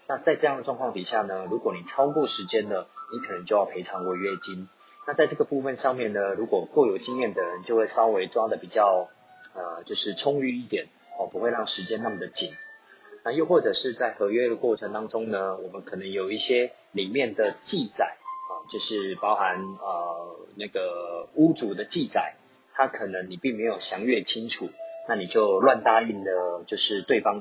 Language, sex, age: Chinese, male, 40-59